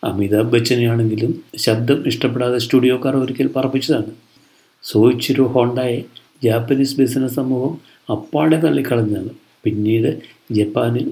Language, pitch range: Malayalam, 110-140 Hz